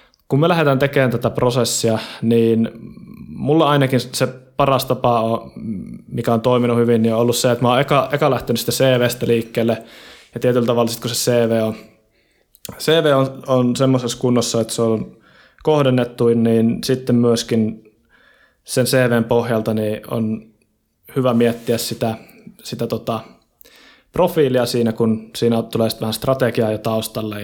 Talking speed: 150 wpm